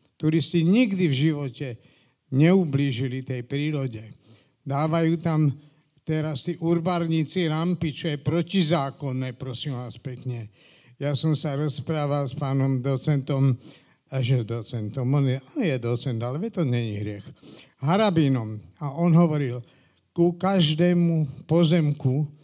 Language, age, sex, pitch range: Slovak, 50-69, male, 135-170 Hz